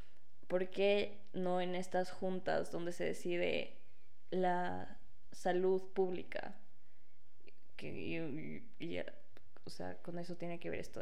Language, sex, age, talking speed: Spanish, female, 20-39, 135 wpm